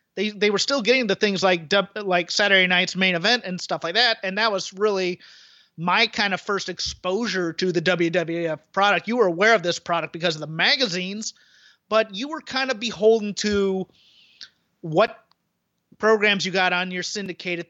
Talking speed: 185 wpm